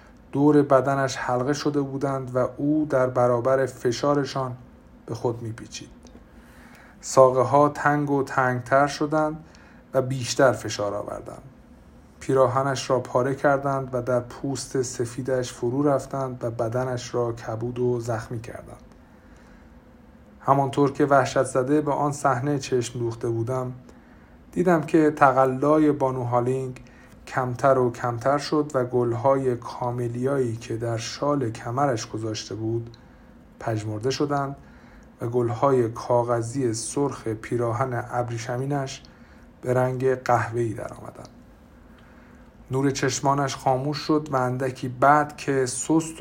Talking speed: 115 wpm